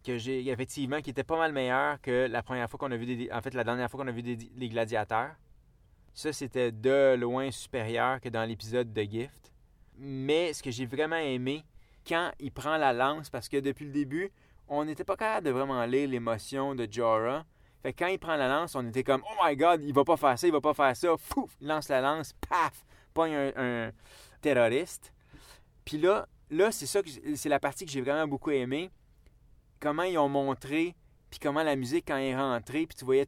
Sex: male